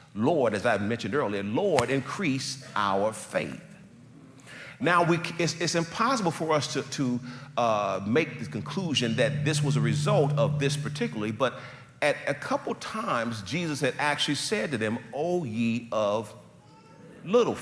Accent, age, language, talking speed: American, 40-59, English, 150 wpm